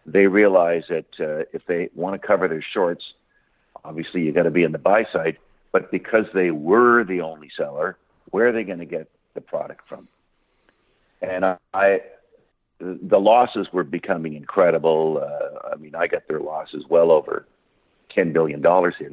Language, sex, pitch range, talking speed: English, male, 85-115 Hz, 175 wpm